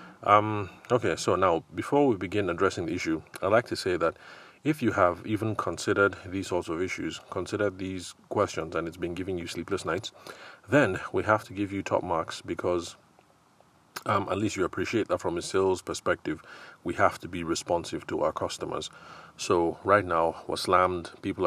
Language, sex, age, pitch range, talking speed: English, male, 30-49, 85-105 Hz, 185 wpm